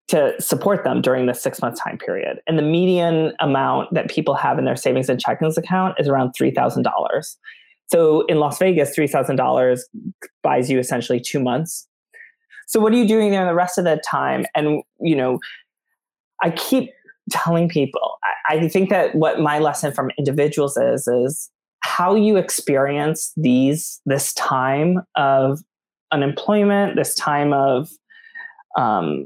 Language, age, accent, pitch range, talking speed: English, 20-39, American, 135-180 Hz, 155 wpm